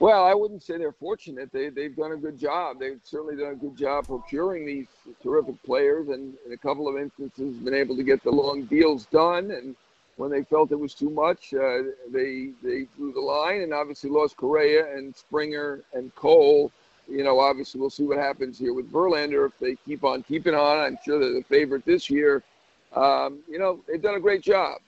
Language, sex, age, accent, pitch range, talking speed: English, male, 50-69, American, 140-200 Hz, 215 wpm